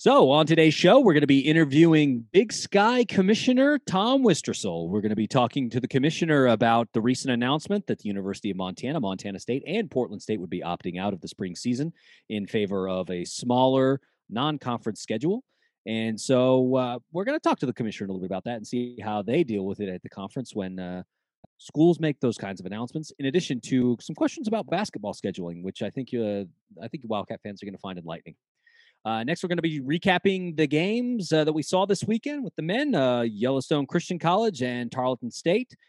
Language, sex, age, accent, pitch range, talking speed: English, male, 30-49, American, 115-190 Hz, 215 wpm